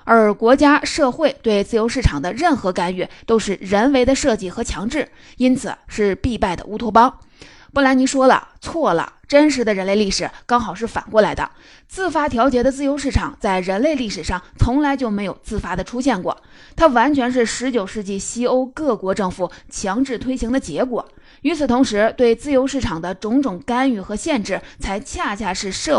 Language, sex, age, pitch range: Chinese, female, 20-39, 205-270 Hz